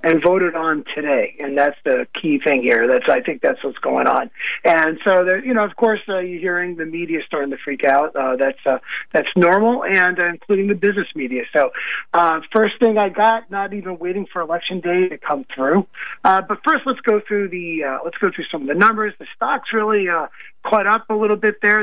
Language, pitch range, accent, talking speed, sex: English, 150-210 Hz, American, 230 wpm, male